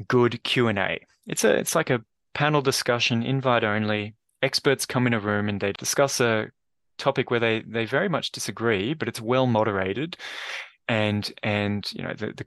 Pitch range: 100-125 Hz